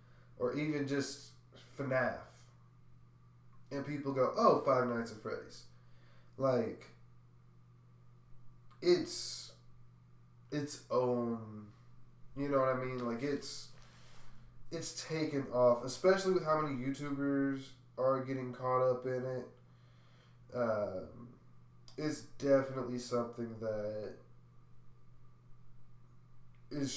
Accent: American